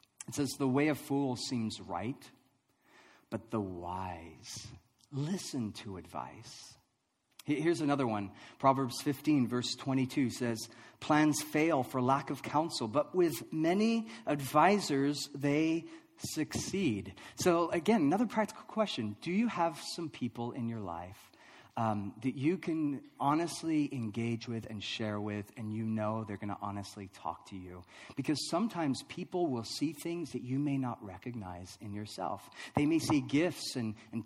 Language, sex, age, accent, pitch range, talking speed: English, male, 40-59, American, 110-155 Hz, 150 wpm